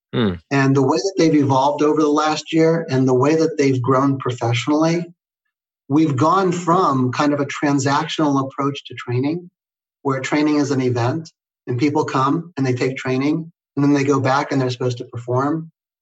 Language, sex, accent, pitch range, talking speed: English, male, American, 130-155 Hz, 185 wpm